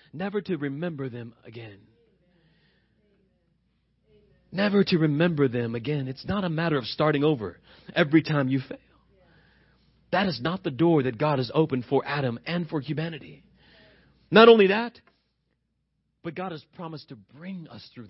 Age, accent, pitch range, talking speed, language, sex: 40-59, American, 150-215 Hz, 155 wpm, English, male